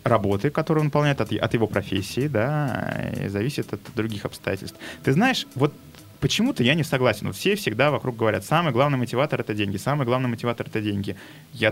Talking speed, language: 180 wpm, Russian